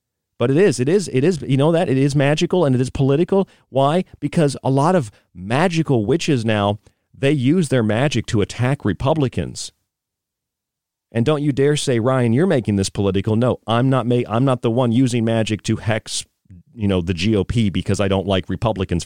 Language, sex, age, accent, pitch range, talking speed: English, male, 40-59, American, 100-140 Hz, 195 wpm